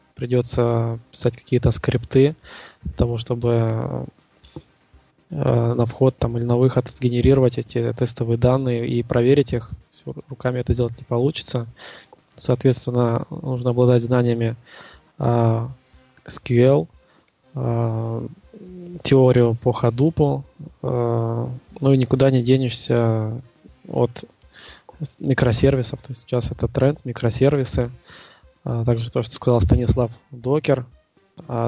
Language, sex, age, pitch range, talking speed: Russian, male, 20-39, 120-130 Hz, 100 wpm